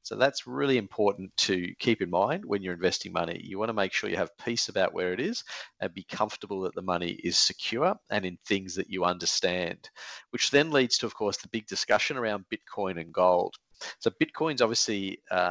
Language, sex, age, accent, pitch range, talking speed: English, male, 40-59, Australian, 90-115 Hz, 215 wpm